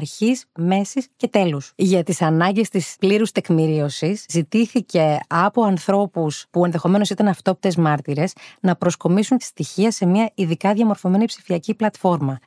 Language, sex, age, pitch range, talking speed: Greek, female, 30-49, 165-210 Hz, 135 wpm